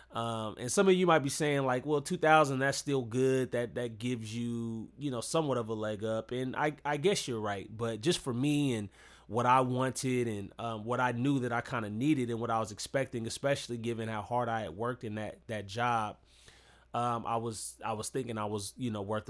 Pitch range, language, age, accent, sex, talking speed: 110-135 Hz, English, 20-39, American, male, 235 wpm